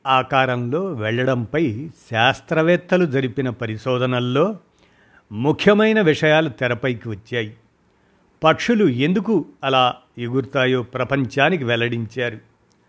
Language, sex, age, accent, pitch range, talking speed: Telugu, male, 50-69, native, 125-160 Hz, 70 wpm